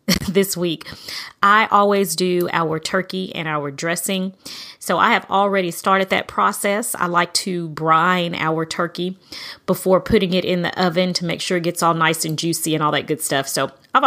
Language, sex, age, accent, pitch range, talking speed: English, female, 30-49, American, 160-190 Hz, 190 wpm